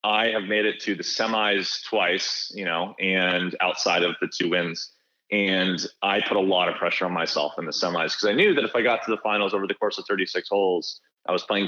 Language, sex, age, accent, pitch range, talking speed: English, male, 30-49, American, 95-110 Hz, 240 wpm